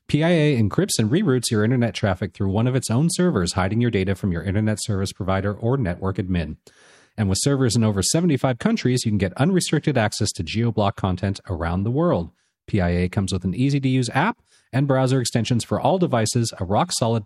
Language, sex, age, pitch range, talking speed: English, male, 40-59, 95-135 Hz, 195 wpm